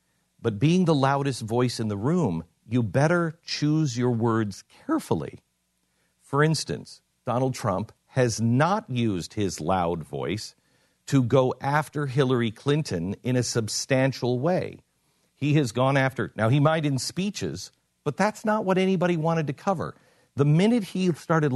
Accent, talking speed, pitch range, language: American, 150 wpm, 110-150 Hz, English